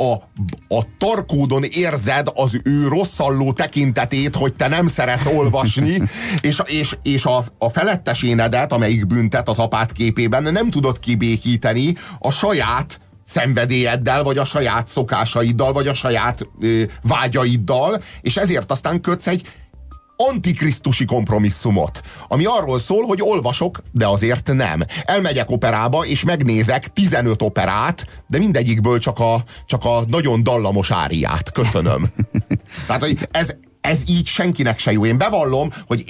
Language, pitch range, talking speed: Hungarian, 115-155 Hz, 135 wpm